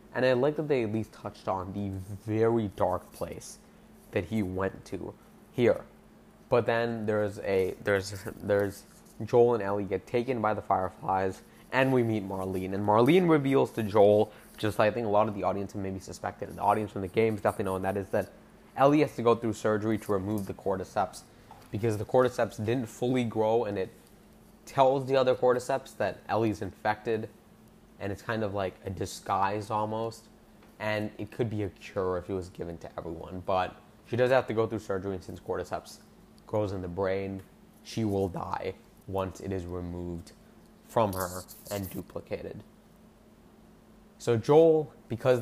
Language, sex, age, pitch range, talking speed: English, male, 20-39, 95-115 Hz, 185 wpm